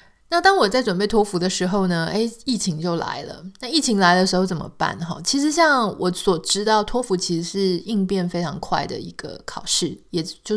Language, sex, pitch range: Chinese, female, 170-215 Hz